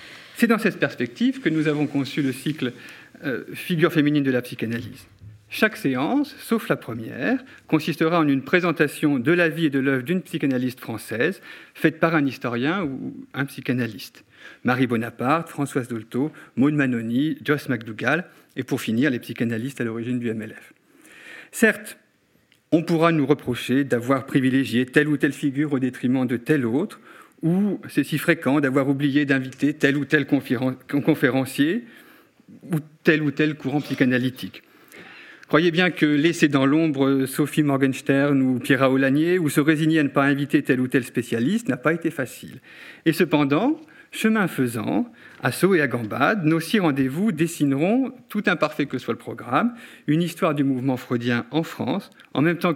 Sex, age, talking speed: male, 40-59, 170 wpm